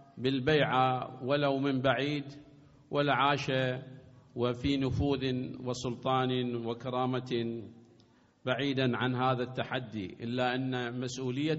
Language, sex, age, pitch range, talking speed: Arabic, male, 50-69, 125-145 Hz, 85 wpm